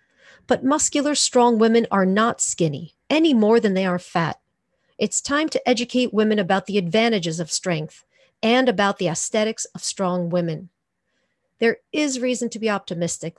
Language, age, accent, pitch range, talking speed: English, 40-59, American, 180-225 Hz, 160 wpm